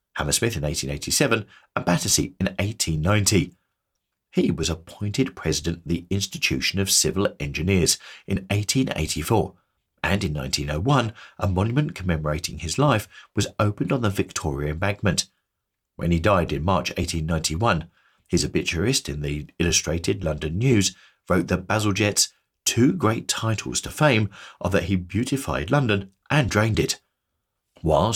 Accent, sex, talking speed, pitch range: British, male, 135 wpm, 80-105 Hz